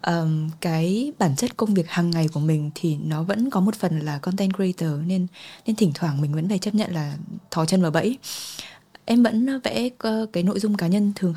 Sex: female